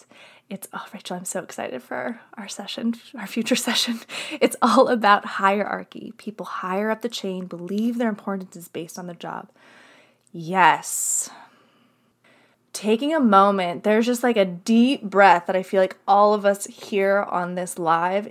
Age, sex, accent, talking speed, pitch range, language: 20-39, female, American, 165 wpm, 180-230 Hz, English